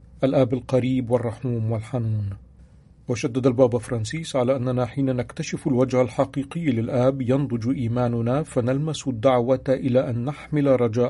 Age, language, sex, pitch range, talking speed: 40-59, Arabic, male, 120-135 Hz, 120 wpm